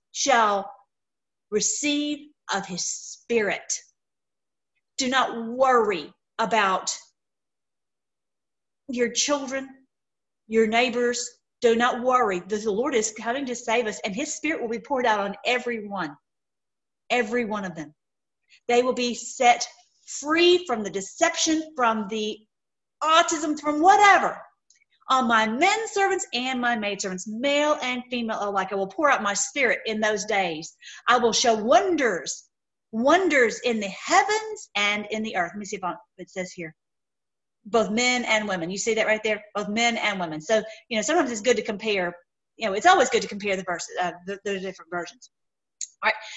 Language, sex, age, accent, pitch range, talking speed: English, female, 40-59, American, 210-280 Hz, 165 wpm